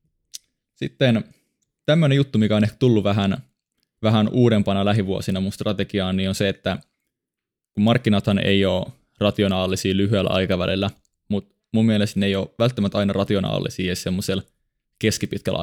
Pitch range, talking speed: 95-105 Hz, 135 wpm